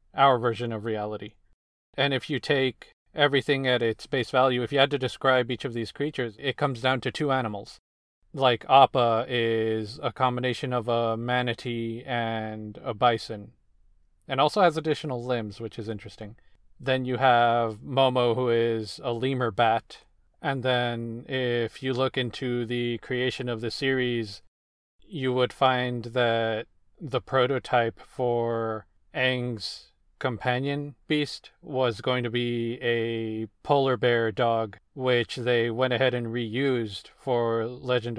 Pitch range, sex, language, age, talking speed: 115-130 Hz, male, English, 40-59, 145 wpm